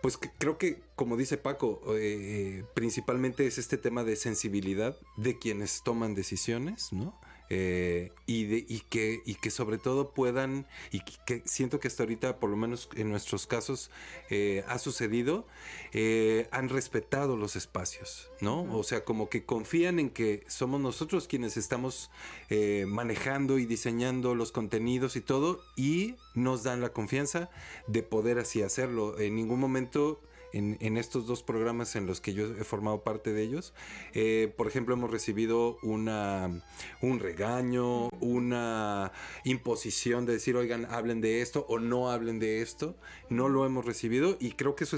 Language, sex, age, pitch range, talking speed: Spanish, male, 40-59, 105-130 Hz, 160 wpm